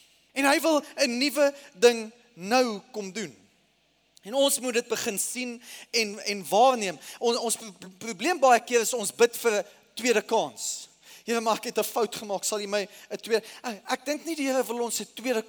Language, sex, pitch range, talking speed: English, male, 220-275 Hz, 175 wpm